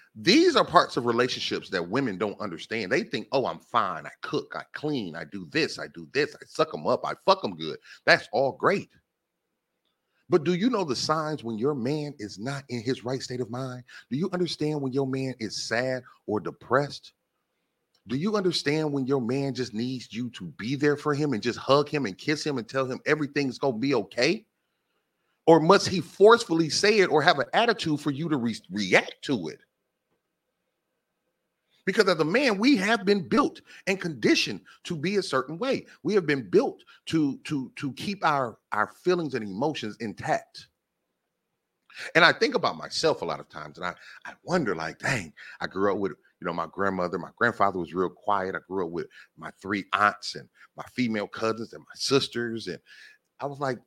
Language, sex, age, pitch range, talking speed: English, male, 30-49, 125-175 Hz, 205 wpm